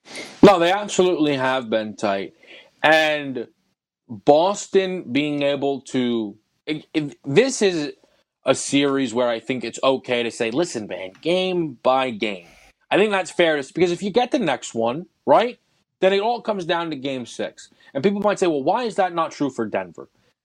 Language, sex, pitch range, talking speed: English, male, 130-205 Hz, 175 wpm